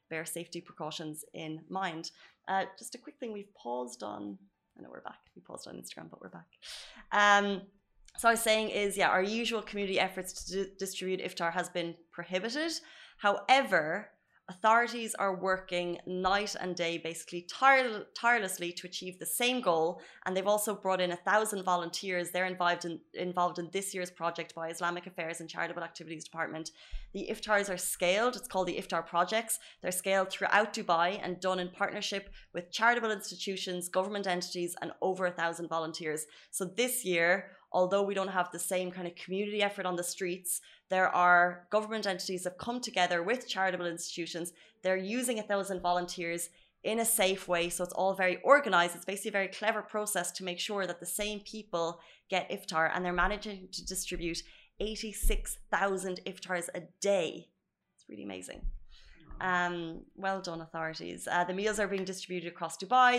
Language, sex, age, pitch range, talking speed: Arabic, female, 20-39, 175-200 Hz, 175 wpm